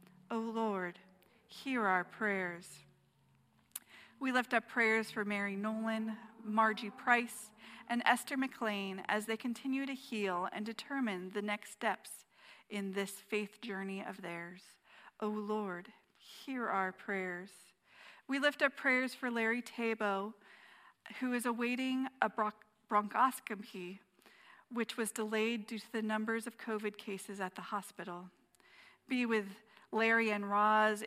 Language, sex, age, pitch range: English, female, 40-59, 205-235 Hz